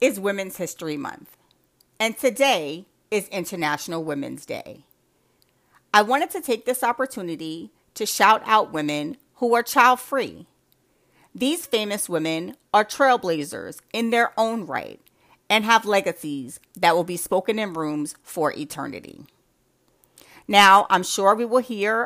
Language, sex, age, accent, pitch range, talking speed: English, female, 40-59, American, 170-235 Hz, 135 wpm